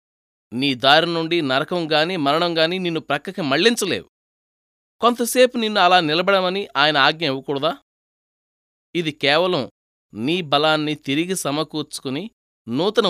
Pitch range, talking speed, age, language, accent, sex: 130-195 Hz, 100 wpm, 20-39, Telugu, native, male